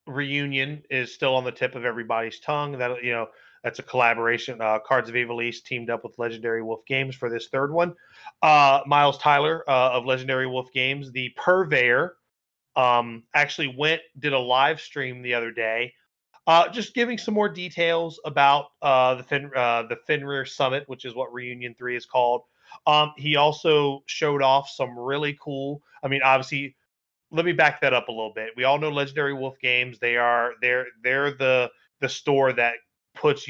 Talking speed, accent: 185 wpm, American